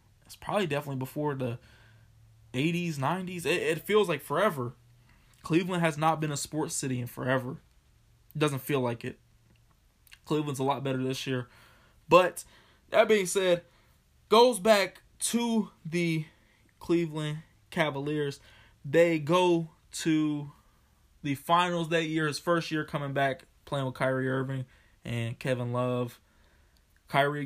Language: English